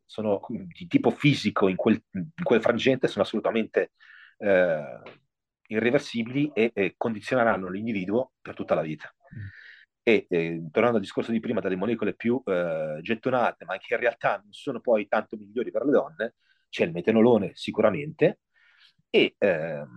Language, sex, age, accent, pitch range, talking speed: Italian, male, 40-59, native, 105-145 Hz, 155 wpm